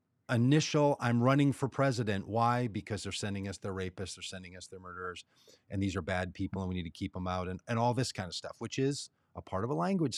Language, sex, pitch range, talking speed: English, male, 115-155 Hz, 255 wpm